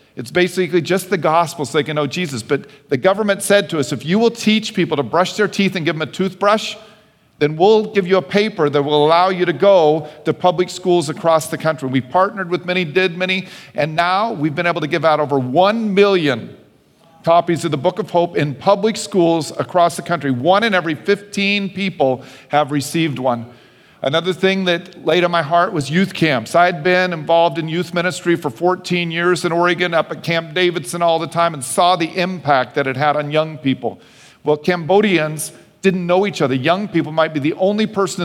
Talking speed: 215 wpm